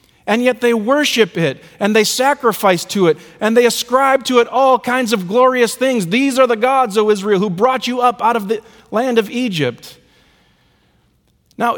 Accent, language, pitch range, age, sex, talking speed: American, English, 155-220 Hz, 40-59, male, 190 wpm